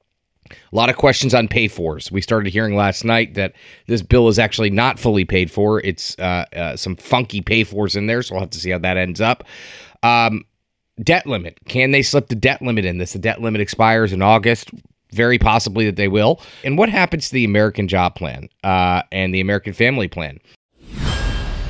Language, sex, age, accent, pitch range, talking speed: English, male, 30-49, American, 95-120 Hz, 200 wpm